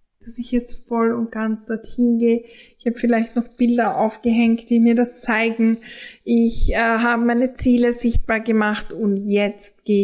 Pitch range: 215-250 Hz